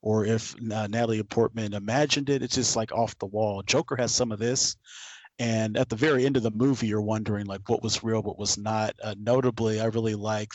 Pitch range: 105-120 Hz